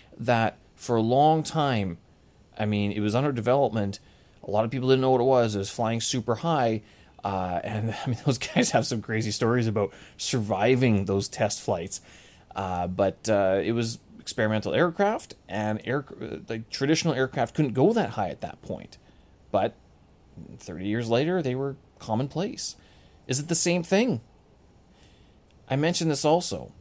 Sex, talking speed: male, 170 wpm